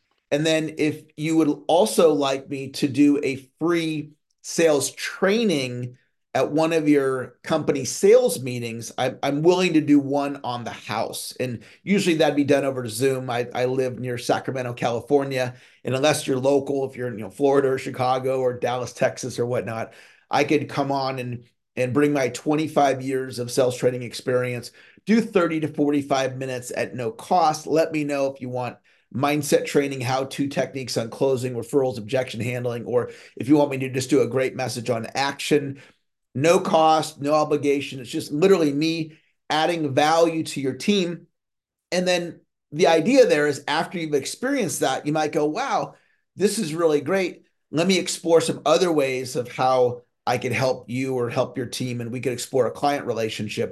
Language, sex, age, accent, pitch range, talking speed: English, male, 30-49, American, 125-155 Hz, 180 wpm